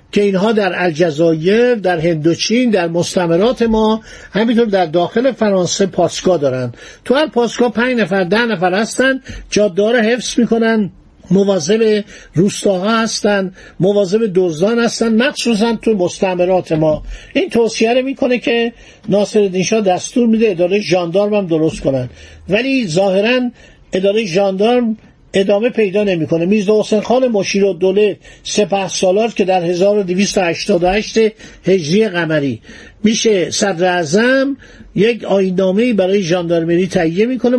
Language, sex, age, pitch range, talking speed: Persian, male, 50-69, 180-225 Hz, 125 wpm